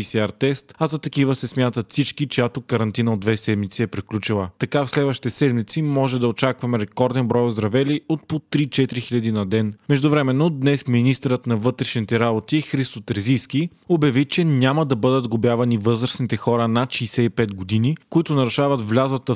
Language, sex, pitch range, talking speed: Bulgarian, male, 120-140 Hz, 165 wpm